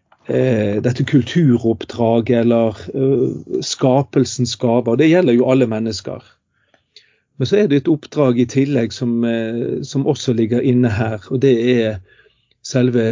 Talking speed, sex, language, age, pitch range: 150 wpm, male, English, 40-59, 115-135 Hz